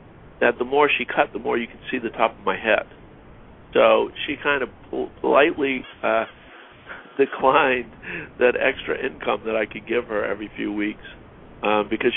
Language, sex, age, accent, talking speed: English, male, 50-69, American, 175 wpm